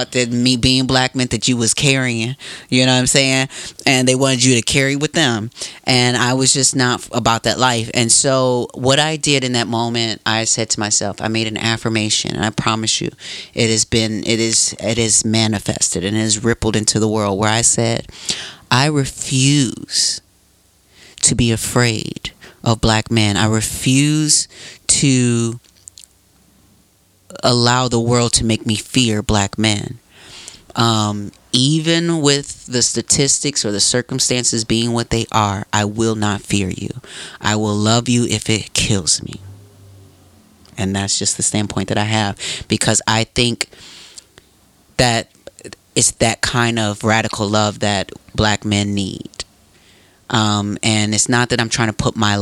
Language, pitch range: English, 105-125 Hz